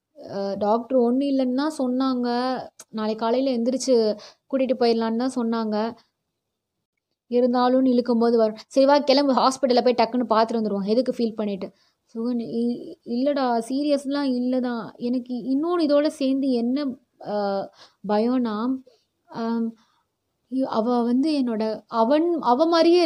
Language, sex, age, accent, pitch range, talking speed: Tamil, female, 20-39, native, 230-290 Hz, 105 wpm